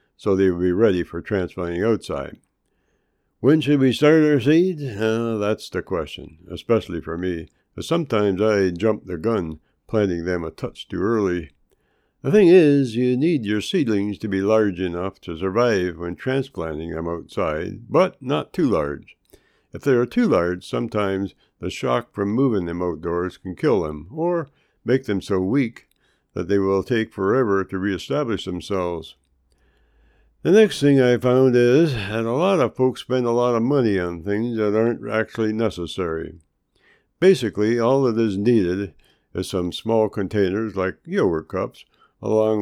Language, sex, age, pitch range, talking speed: English, male, 60-79, 90-115 Hz, 165 wpm